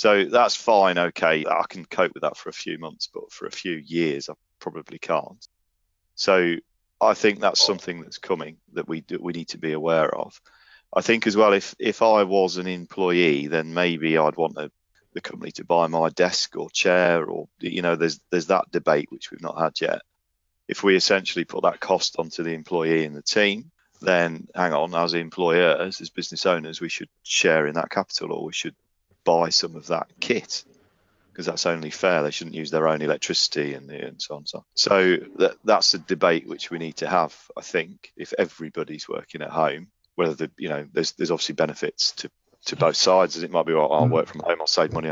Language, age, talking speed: English, 40-59, 220 wpm